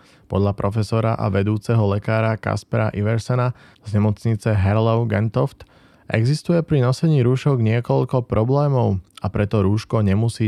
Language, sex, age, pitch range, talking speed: Slovak, male, 20-39, 100-120 Hz, 120 wpm